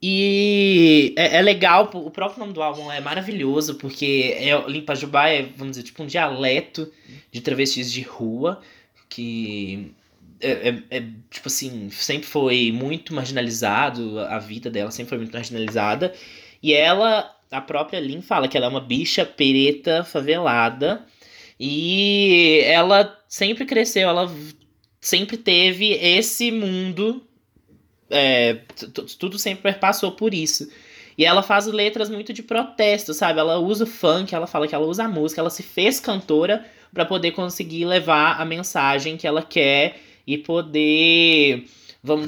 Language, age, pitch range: Portuguese, 20-39, 140-185 Hz